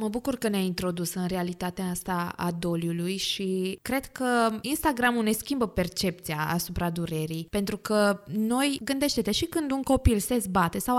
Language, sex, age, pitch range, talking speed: Romanian, female, 20-39, 190-240 Hz, 170 wpm